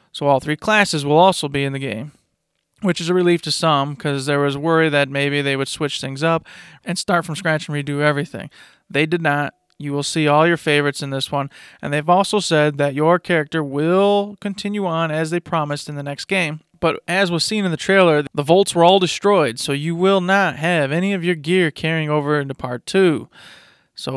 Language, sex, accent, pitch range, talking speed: English, male, American, 145-175 Hz, 225 wpm